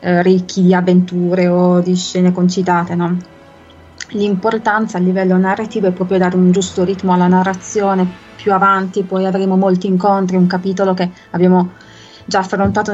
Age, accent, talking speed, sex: 20-39, native, 150 wpm, female